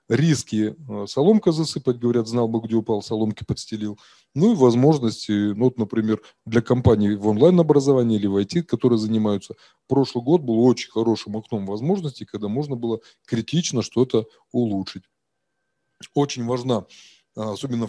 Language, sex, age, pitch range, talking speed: Russian, male, 20-39, 110-145 Hz, 135 wpm